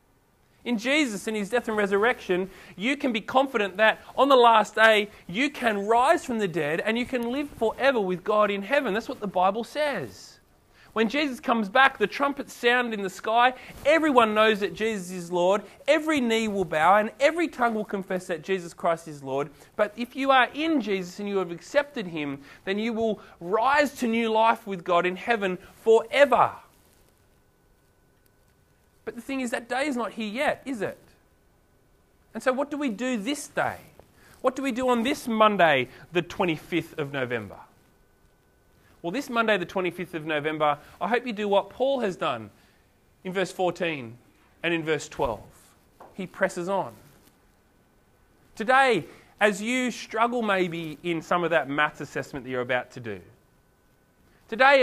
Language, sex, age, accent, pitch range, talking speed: English, male, 30-49, Australian, 180-245 Hz, 175 wpm